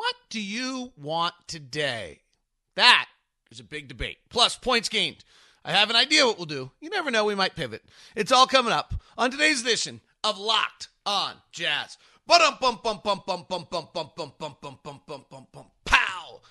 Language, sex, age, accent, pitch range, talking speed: English, male, 40-59, American, 155-225 Hz, 140 wpm